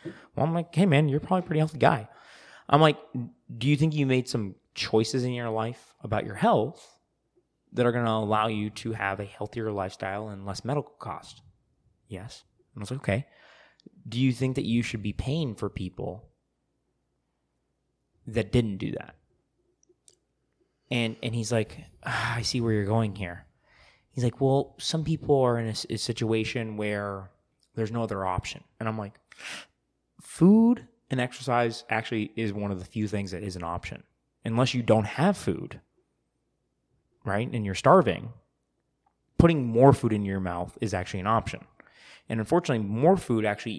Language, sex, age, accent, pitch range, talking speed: English, male, 20-39, American, 100-125 Hz, 175 wpm